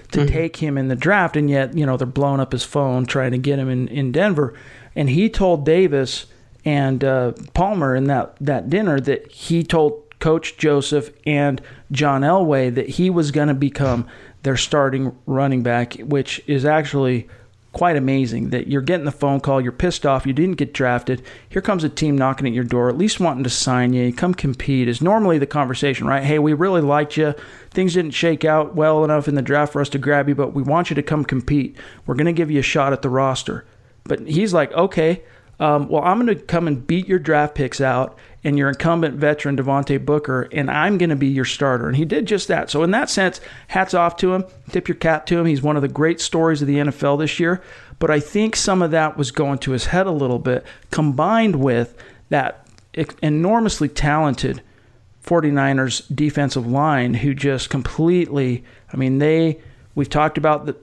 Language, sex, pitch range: English, male, 135-160 Hz